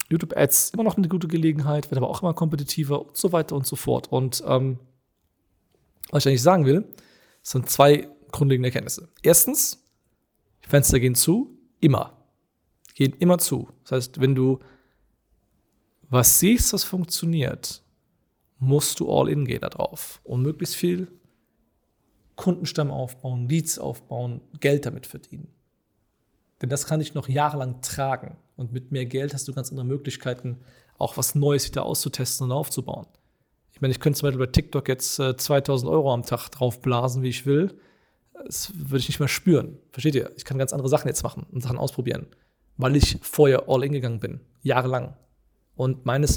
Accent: German